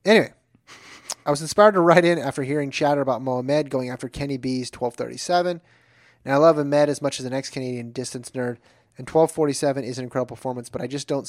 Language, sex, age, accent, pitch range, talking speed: English, male, 30-49, American, 120-145 Hz, 205 wpm